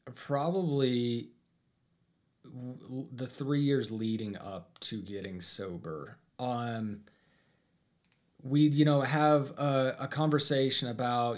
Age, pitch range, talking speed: 30-49, 105-135 Hz, 95 wpm